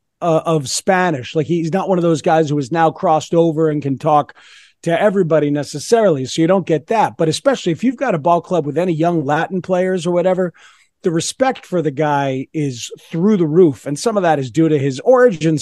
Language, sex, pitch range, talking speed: English, male, 155-200 Hz, 225 wpm